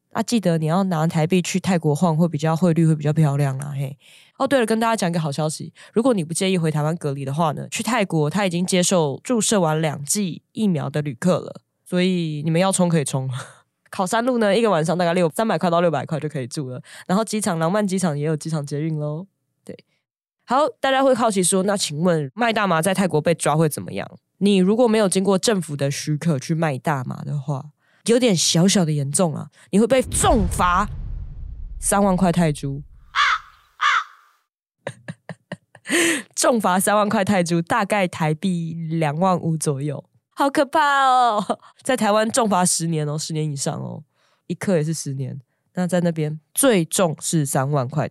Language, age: Chinese, 10-29